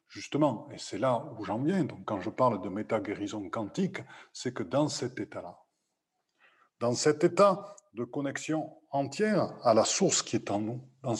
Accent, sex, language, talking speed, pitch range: French, male, French, 175 wpm, 110-150 Hz